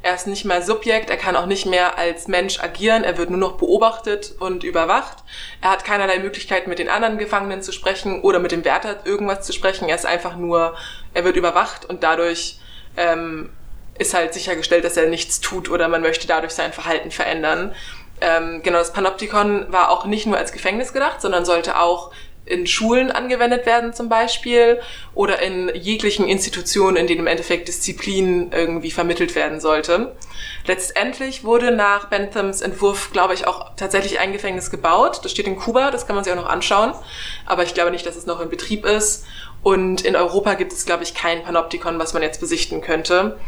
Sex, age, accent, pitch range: female, 20-39, German, 170-200 Hz